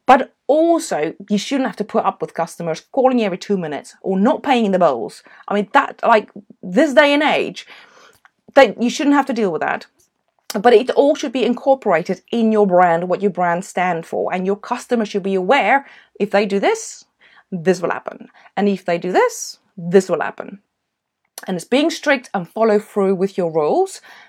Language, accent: English, British